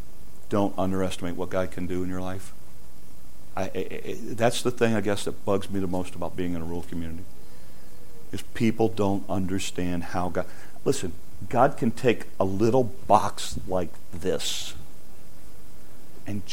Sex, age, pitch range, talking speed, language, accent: male, 50-69, 90-130 Hz, 150 wpm, English, American